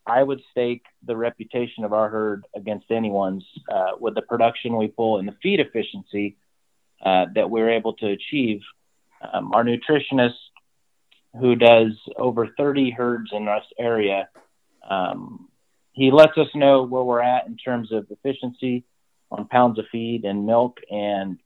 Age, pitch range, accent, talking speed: 30-49, 110-125 Hz, American, 155 wpm